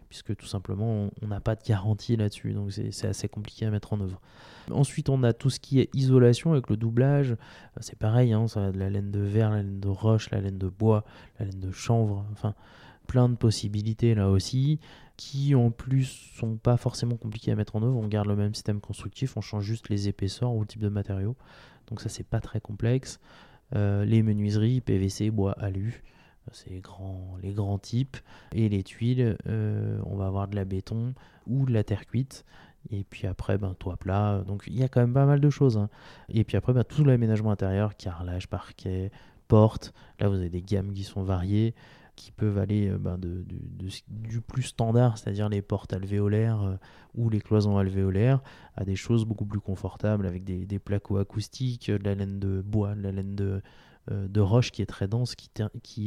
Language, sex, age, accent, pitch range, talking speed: French, male, 20-39, French, 100-115 Hz, 210 wpm